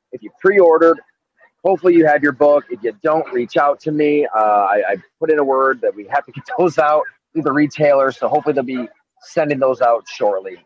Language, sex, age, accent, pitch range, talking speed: English, male, 30-49, American, 115-175 Hz, 225 wpm